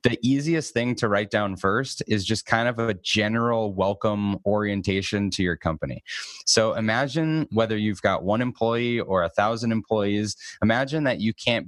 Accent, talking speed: American, 170 wpm